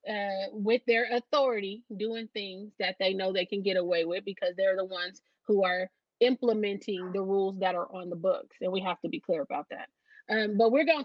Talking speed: 215 wpm